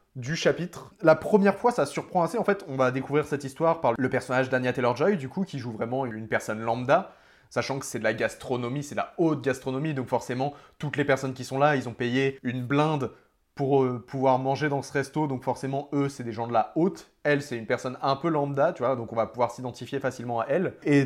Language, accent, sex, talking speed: French, French, male, 245 wpm